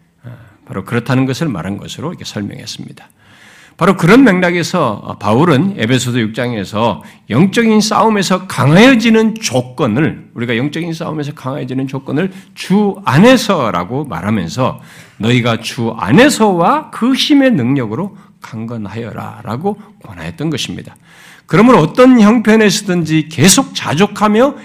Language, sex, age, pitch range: Korean, male, 50-69, 130-215 Hz